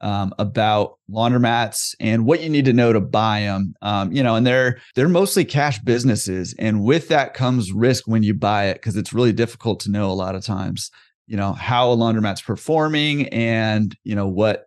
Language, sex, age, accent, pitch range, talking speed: English, male, 30-49, American, 100-130 Hz, 205 wpm